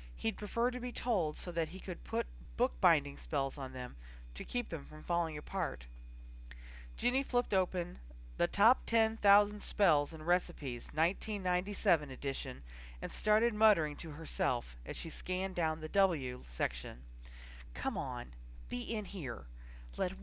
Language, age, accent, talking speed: English, 40-59, American, 150 wpm